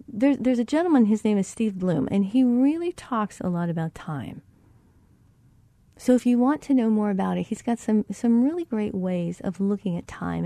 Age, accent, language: 40-59, American, English